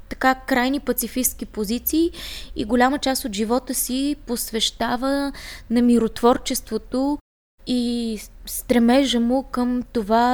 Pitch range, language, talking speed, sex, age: 230-265 Hz, Bulgarian, 105 wpm, female, 20-39